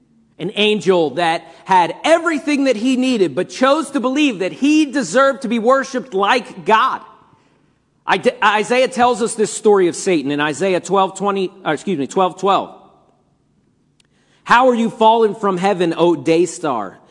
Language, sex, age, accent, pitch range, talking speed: English, male, 40-59, American, 190-250 Hz, 160 wpm